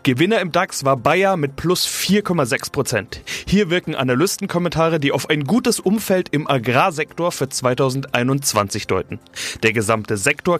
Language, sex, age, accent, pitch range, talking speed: German, male, 30-49, German, 125-170 Hz, 135 wpm